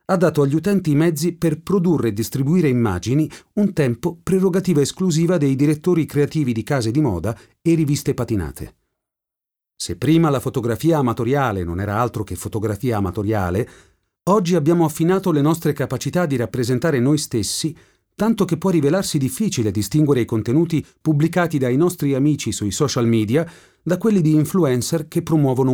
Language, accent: English, Italian